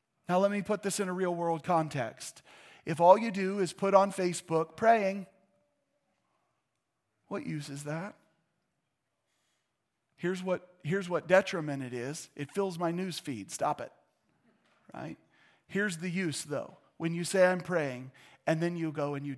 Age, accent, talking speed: 40-59, American, 160 wpm